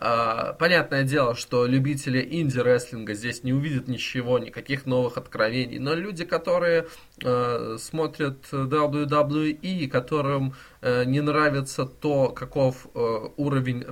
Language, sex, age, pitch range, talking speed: Russian, male, 20-39, 120-145 Hz, 105 wpm